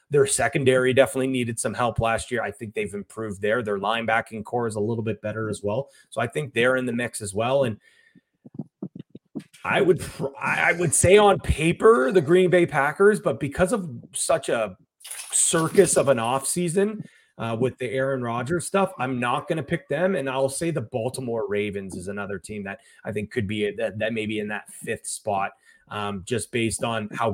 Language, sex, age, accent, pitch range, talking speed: English, male, 30-49, American, 105-135 Hz, 200 wpm